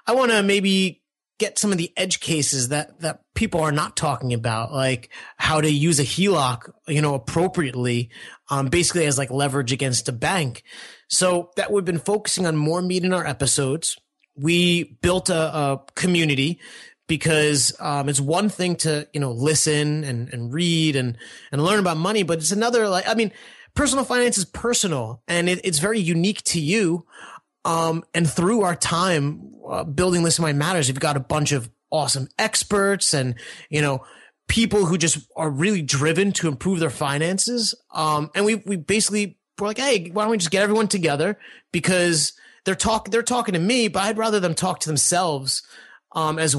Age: 30-49